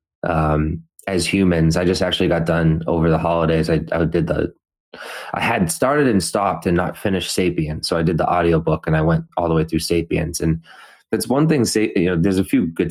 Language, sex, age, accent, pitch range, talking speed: English, male, 20-39, American, 80-90 Hz, 225 wpm